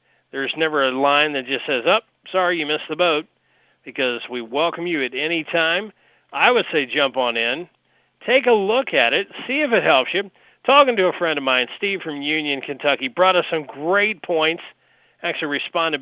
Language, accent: English, American